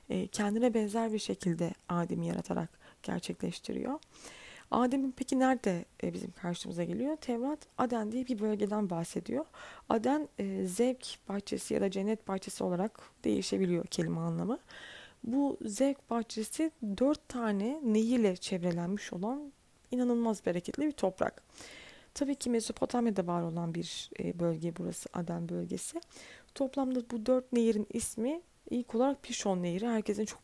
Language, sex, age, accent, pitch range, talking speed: Turkish, female, 30-49, native, 185-245 Hz, 125 wpm